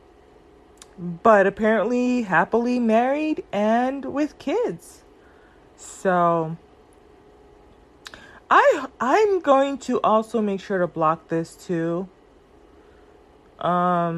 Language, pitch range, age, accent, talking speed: English, 175-275 Hz, 20-39, American, 85 wpm